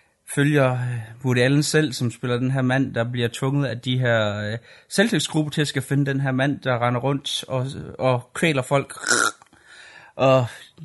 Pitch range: 120-150 Hz